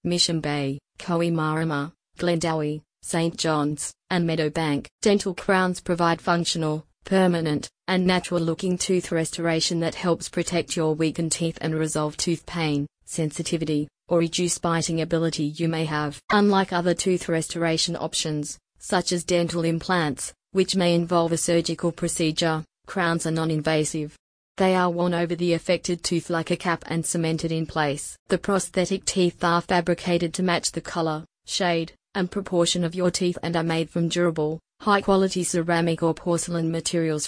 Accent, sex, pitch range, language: Australian, female, 160-175 Hz, English